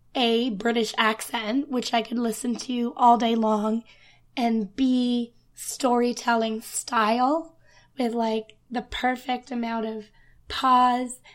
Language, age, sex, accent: English, 20-39, female, American